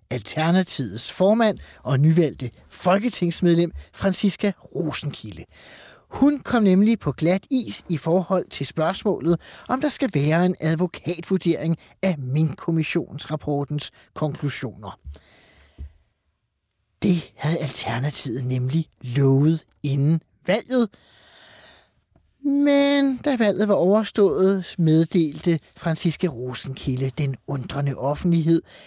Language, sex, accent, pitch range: Danish, male, native, 140-190 Hz